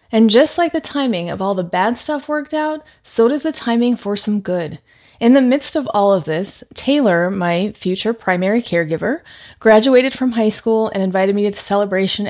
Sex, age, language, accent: female, 30-49, English, American